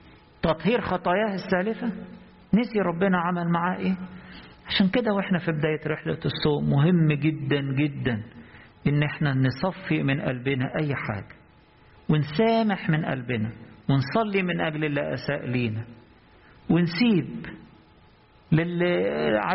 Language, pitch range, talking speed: English, 145-195 Hz, 110 wpm